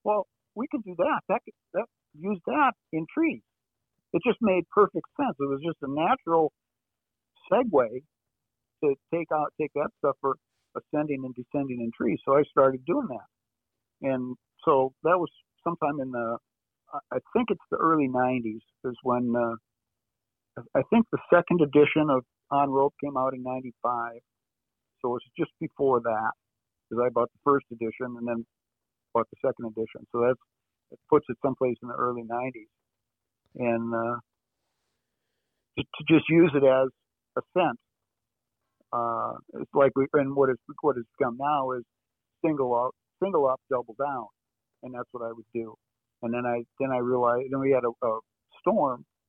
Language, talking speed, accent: English, 175 wpm, American